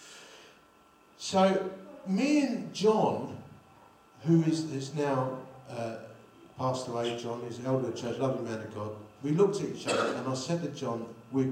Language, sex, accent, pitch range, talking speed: English, male, British, 120-155 Hz, 160 wpm